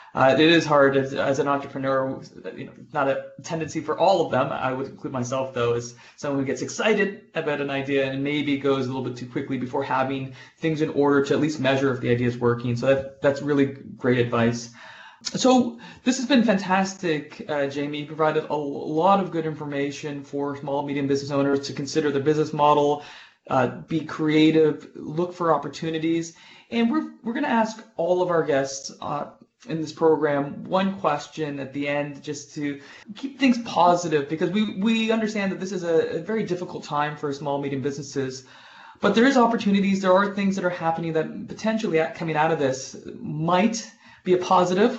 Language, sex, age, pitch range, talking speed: English, male, 30-49, 140-185 Hz, 200 wpm